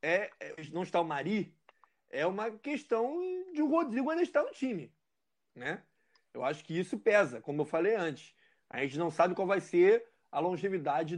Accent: Brazilian